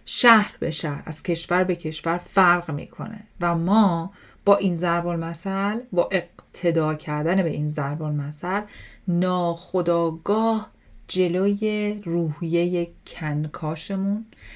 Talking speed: 105 wpm